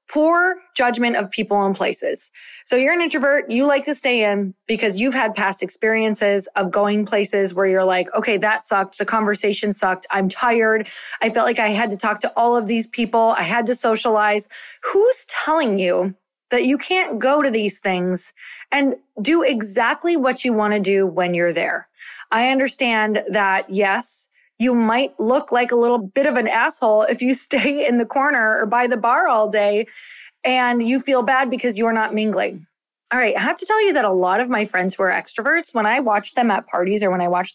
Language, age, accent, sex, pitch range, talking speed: English, 20-39, American, female, 210-285 Hz, 210 wpm